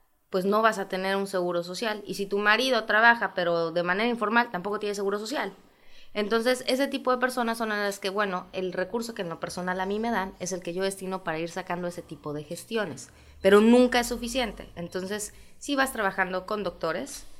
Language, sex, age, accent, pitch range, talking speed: Spanish, female, 20-39, Mexican, 175-220 Hz, 215 wpm